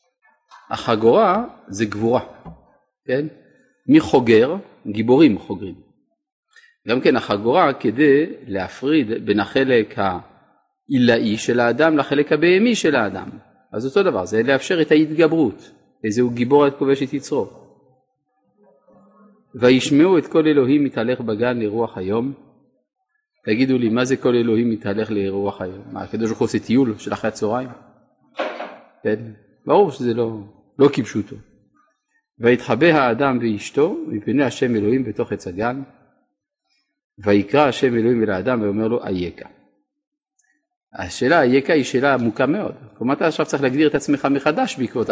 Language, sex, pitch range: Hebrew, male, 110-180 Hz